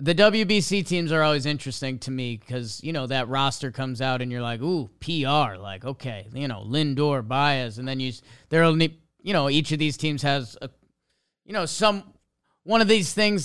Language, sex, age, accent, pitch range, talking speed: English, male, 30-49, American, 125-165 Hz, 200 wpm